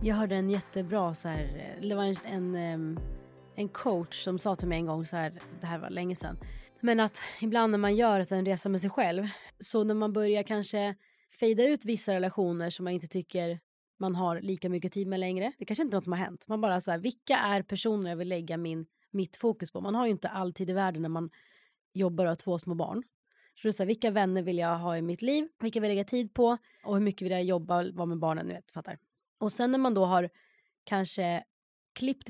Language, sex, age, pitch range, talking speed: Swedish, female, 20-39, 180-220 Hz, 245 wpm